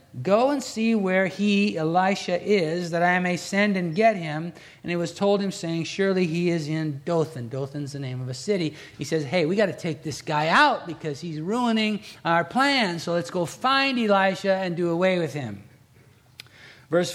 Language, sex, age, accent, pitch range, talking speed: English, male, 50-69, American, 135-185 Hz, 200 wpm